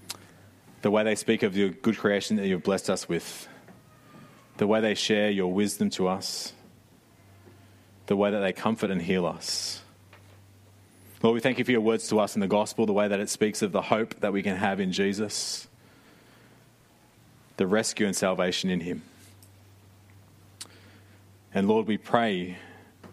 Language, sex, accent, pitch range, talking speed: English, male, Australian, 95-110 Hz, 170 wpm